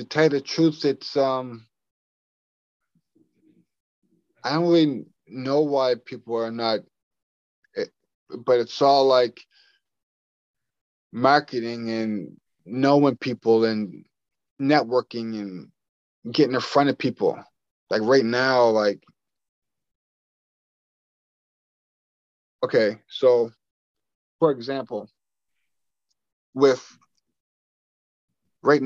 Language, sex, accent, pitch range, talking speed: English, male, American, 110-135 Hz, 85 wpm